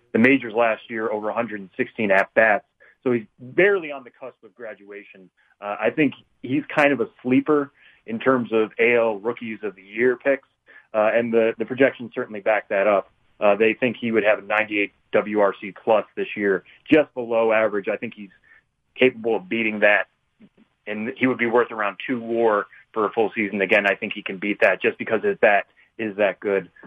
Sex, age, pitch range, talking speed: male, 30-49, 105-125 Hz, 195 wpm